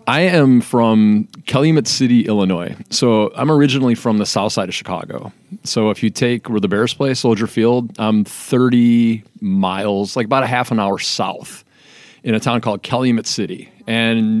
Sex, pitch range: male, 105-130 Hz